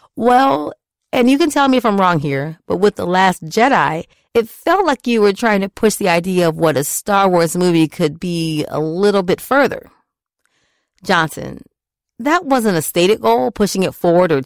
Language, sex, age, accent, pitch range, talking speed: English, female, 40-59, American, 160-225 Hz, 195 wpm